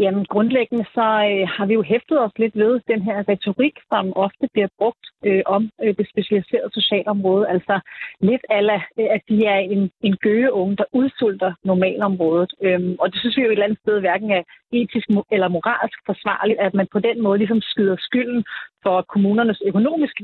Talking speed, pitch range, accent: 195 wpm, 190-225 Hz, native